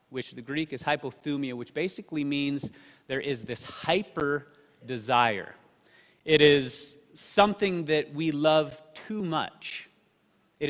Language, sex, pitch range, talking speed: English, male, 125-155 Hz, 120 wpm